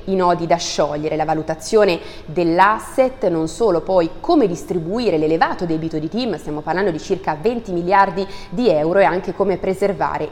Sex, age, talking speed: female, 30-49, 165 wpm